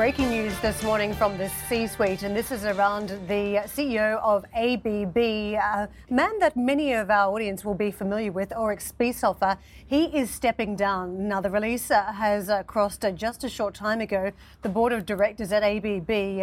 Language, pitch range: English, 195-220 Hz